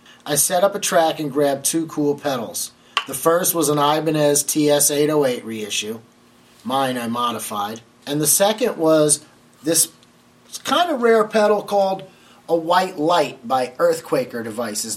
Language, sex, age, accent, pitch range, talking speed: English, male, 30-49, American, 145-180 Hz, 145 wpm